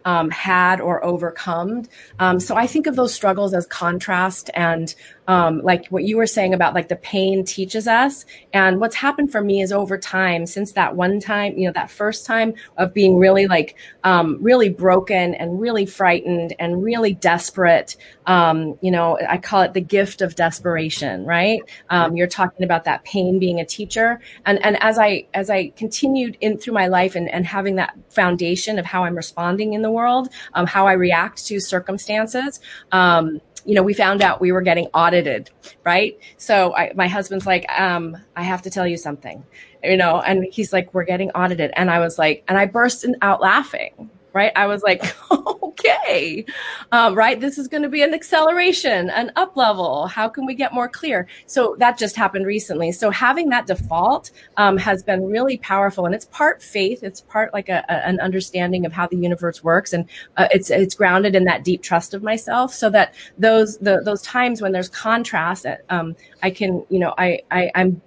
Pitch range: 175-215 Hz